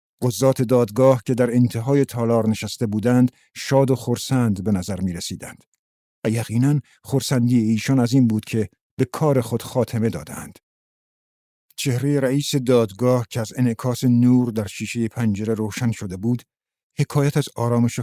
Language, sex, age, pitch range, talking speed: Persian, male, 50-69, 110-130 Hz, 145 wpm